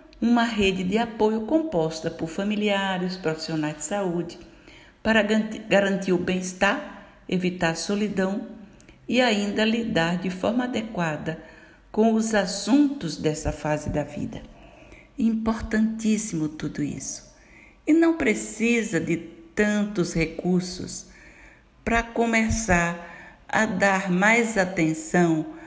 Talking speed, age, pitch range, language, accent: 105 wpm, 60-79, 165-225 Hz, Portuguese, Brazilian